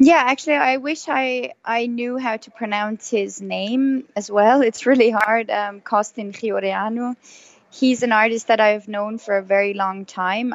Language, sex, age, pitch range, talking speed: English, female, 20-39, 185-225 Hz, 175 wpm